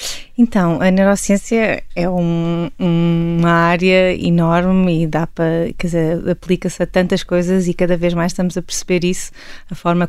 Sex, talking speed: female, 155 wpm